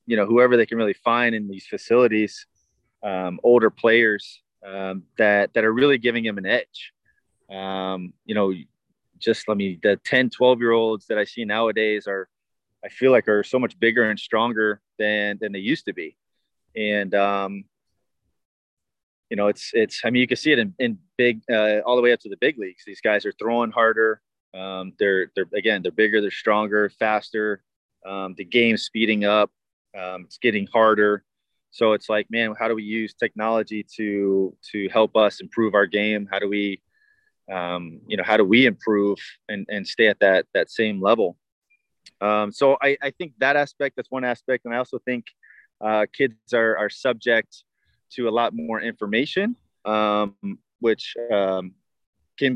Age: 20-39